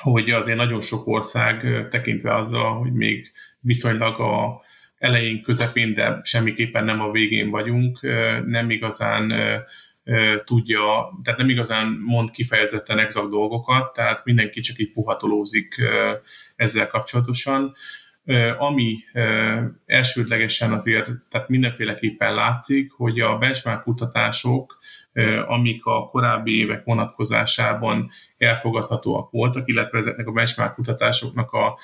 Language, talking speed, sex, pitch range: Hungarian, 110 wpm, male, 110-125 Hz